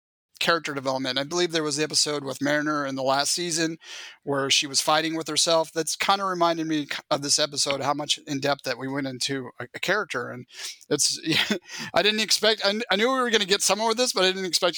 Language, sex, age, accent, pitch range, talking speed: English, male, 30-49, American, 155-190 Hz, 245 wpm